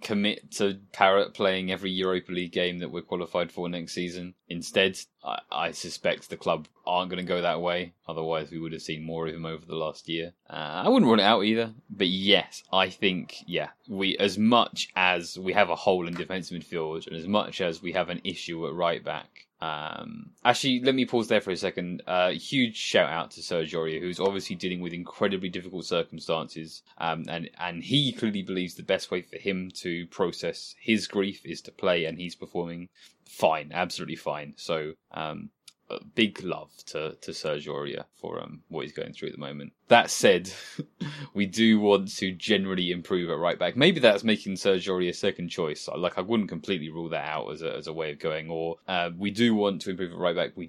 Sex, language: male, English